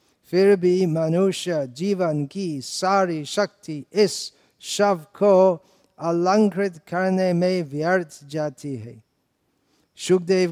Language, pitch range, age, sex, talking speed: Hindi, 135-175 Hz, 50-69, male, 95 wpm